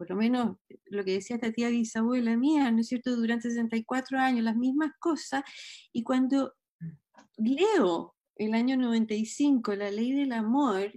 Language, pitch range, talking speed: Spanish, 225-280 Hz, 160 wpm